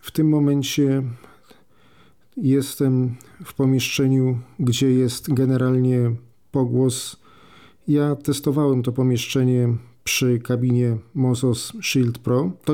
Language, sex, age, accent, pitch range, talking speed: Polish, male, 40-59, native, 125-135 Hz, 95 wpm